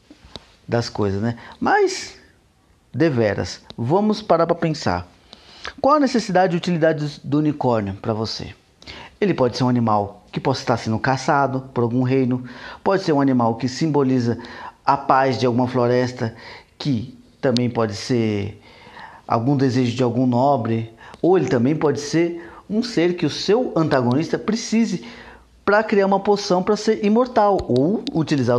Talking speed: 150 wpm